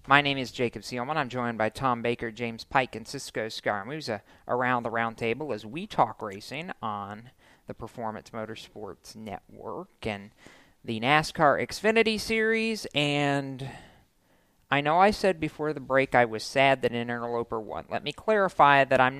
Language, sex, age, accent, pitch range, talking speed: English, male, 40-59, American, 115-150 Hz, 165 wpm